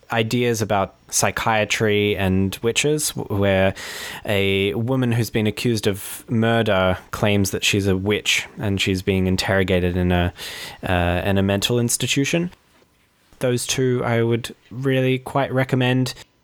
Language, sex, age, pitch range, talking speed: English, male, 20-39, 100-130 Hz, 130 wpm